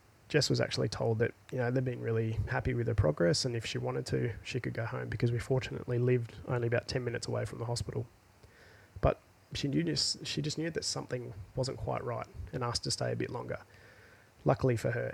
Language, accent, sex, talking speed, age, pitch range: English, Australian, male, 210 wpm, 20-39, 105-125 Hz